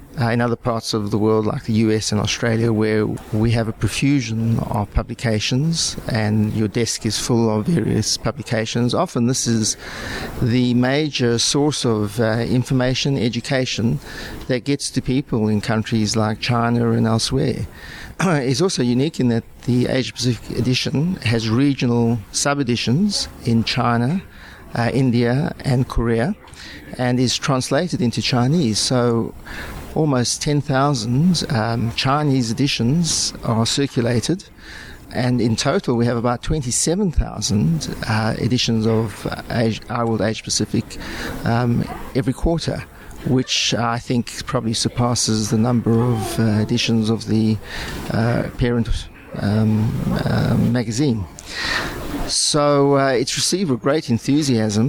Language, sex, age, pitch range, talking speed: English, male, 50-69, 110-130 Hz, 130 wpm